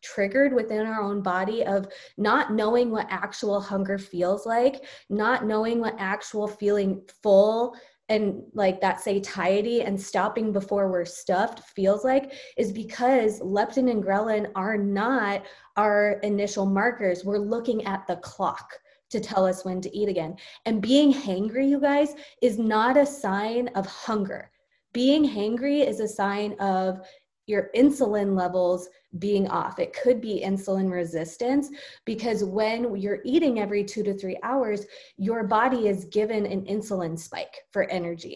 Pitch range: 195-235 Hz